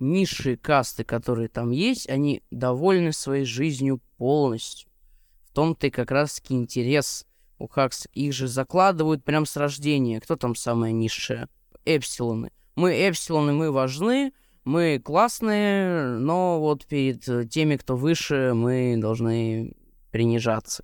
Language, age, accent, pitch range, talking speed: Russian, 20-39, native, 120-155 Hz, 125 wpm